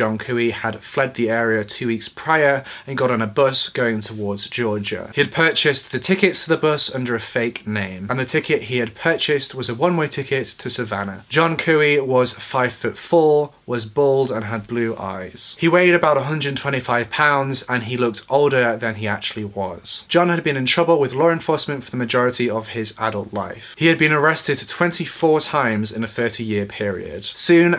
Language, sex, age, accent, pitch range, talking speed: English, male, 30-49, British, 115-150 Hz, 200 wpm